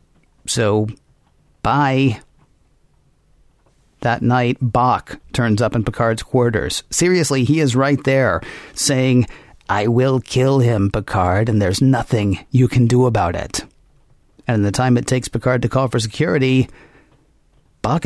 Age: 50-69